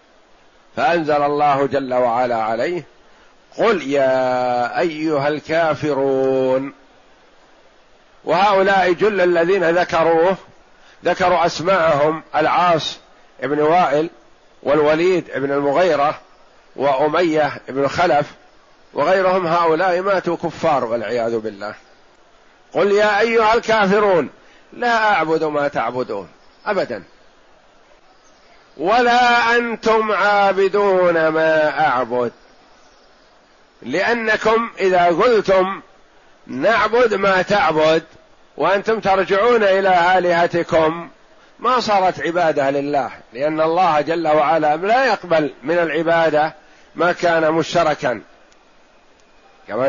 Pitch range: 150-195 Hz